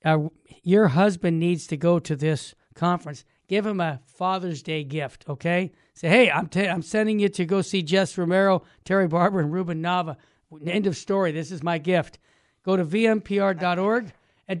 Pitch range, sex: 160-195 Hz, male